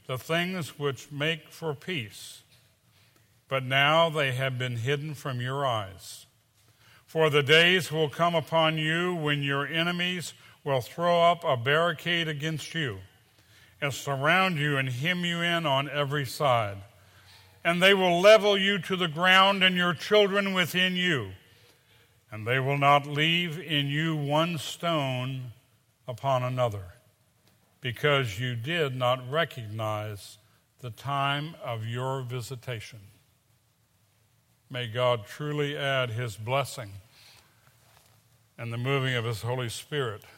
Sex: male